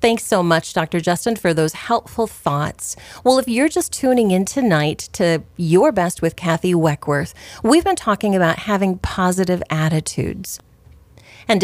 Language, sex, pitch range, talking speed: English, female, 165-220 Hz, 155 wpm